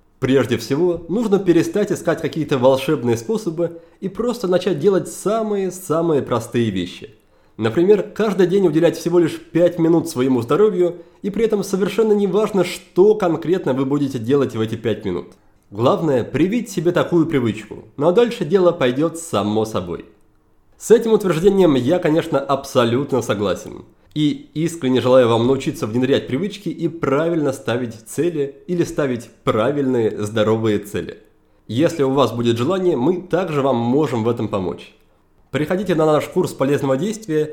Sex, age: male, 30-49